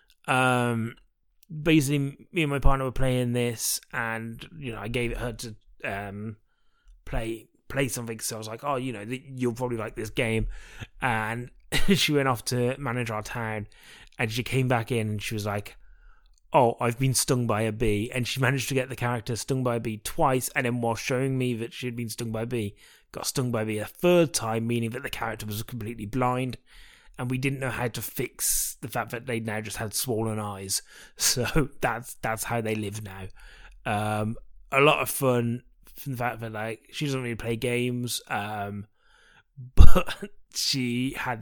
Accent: British